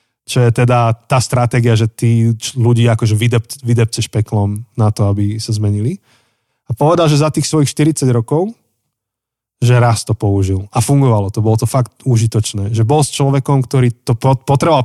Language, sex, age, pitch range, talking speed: Slovak, male, 20-39, 110-135 Hz, 170 wpm